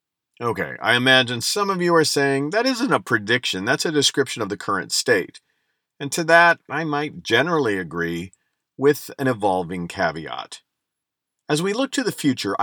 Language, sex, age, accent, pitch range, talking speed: English, male, 50-69, American, 95-140 Hz, 170 wpm